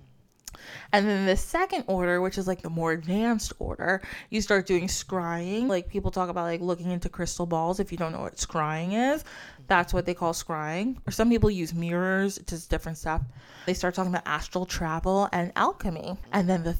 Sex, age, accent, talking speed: female, 20-39, American, 200 wpm